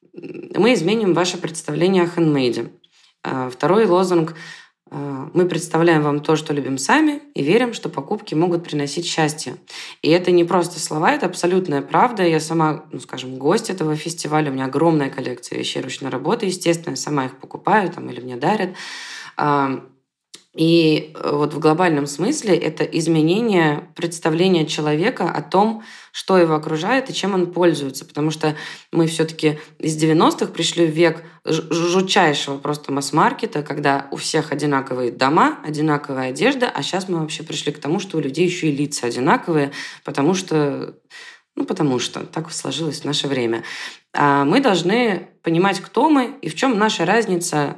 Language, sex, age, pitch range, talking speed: Russian, female, 20-39, 145-180 Hz, 150 wpm